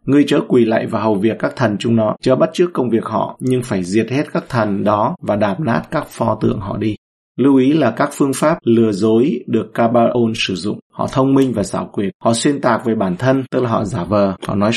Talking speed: 255 wpm